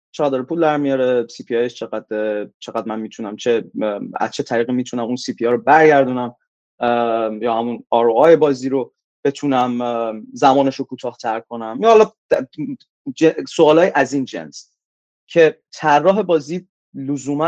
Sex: male